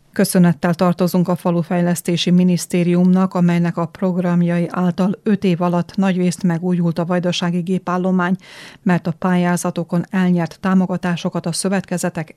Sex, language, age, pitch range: female, Hungarian, 30-49, 170-185 Hz